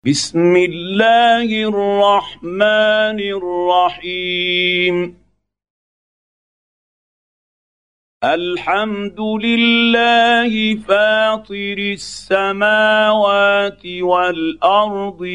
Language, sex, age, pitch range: Arabic, male, 50-69, 180-215 Hz